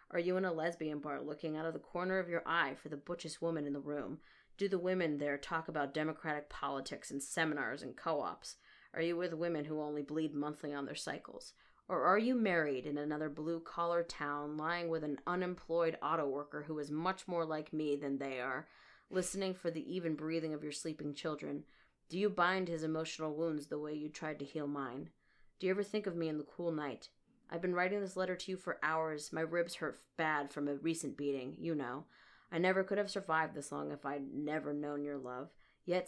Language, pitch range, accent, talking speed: English, 145-170 Hz, American, 220 wpm